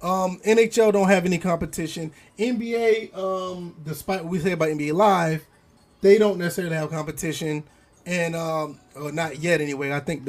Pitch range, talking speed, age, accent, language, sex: 160-210 Hz, 165 wpm, 20-39, American, English, male